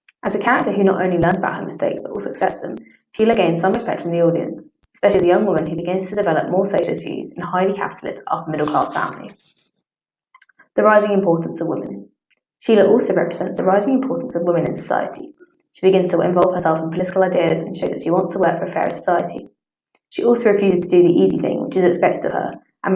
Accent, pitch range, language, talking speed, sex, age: British, 175-200 Hz, English, 225 wpm, female, 20-39